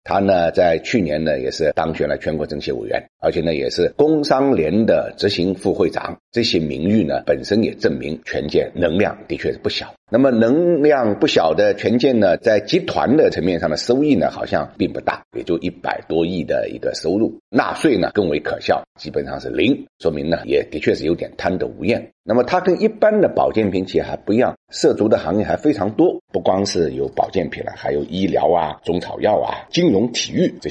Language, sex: Chinese, male